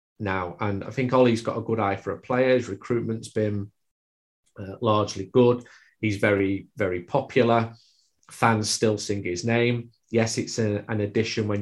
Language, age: English, 30-49